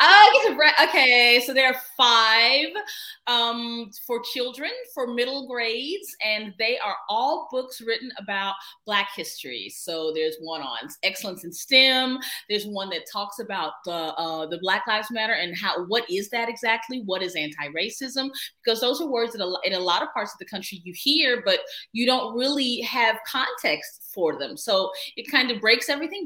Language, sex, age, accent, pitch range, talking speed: English, female, 30-49, American, 175-245 Hz, 175 wpm